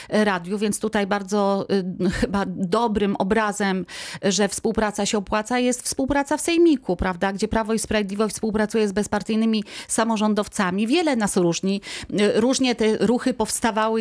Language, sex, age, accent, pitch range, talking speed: Polish, female, 30-49, native, 200-250 Hz, 140 wpm